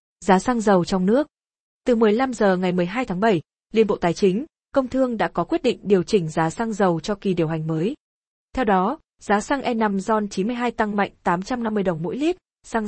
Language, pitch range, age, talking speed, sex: Vietnamese, 190-240 Hz, 20-39, 215 wpm, female